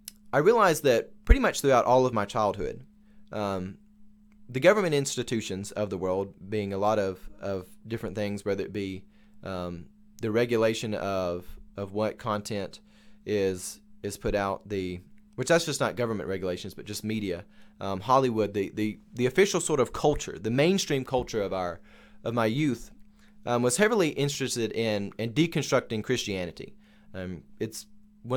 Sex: male